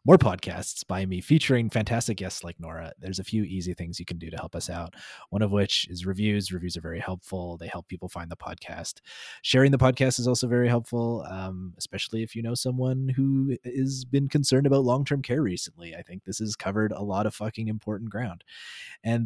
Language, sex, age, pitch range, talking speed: English, male, 20-39, 95-120 Hz, 215 wpm